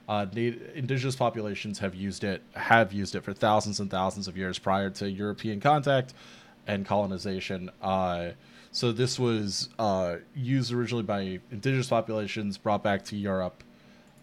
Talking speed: 150 wpm